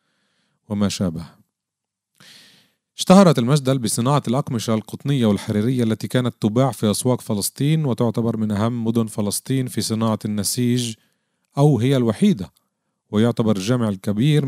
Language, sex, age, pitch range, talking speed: Arabic, male, 40-59, 105-125 Hz, 115 wpm